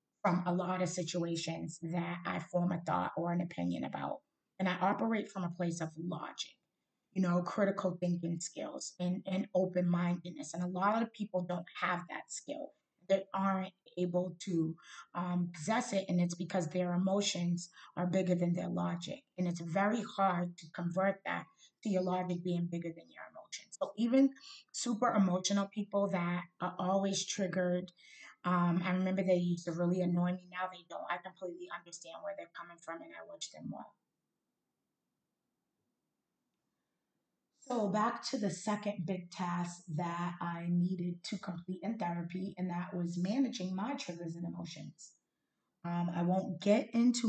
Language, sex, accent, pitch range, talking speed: English, female, American, 175-195 Hz, 165 wpm